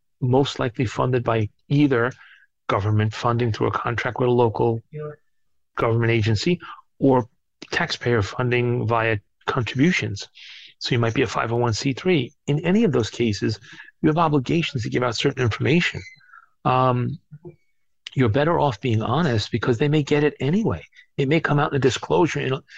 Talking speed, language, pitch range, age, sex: 155 wpm, English, 120-150 Hz, 40-59, male